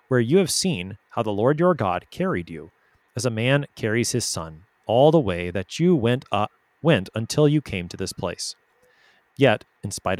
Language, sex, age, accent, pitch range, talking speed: English, male, 30-49, American, 100-140 Hz, 200 wpm